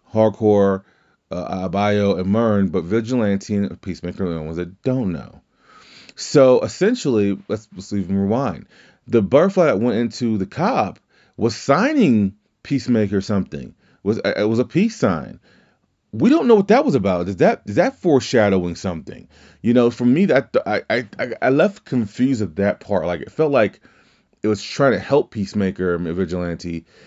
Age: 30-49